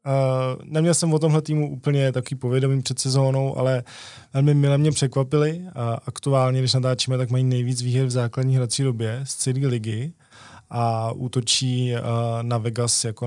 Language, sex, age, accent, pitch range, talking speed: Czech, male, 20-39, native, 120-135 Hz, 165 wpm